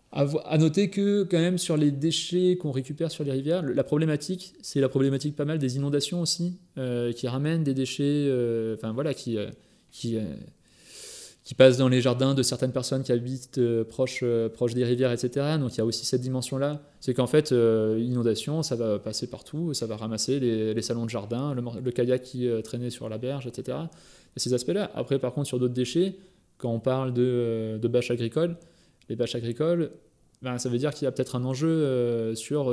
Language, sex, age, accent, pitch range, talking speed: French, male, 20-39, French, 120-145 Hz, 215 wpm